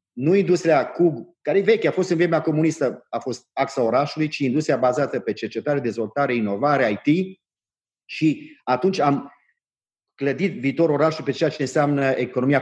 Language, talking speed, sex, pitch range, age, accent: Romanian, 160 wpm, male, 125-160 Hz, 30-49, native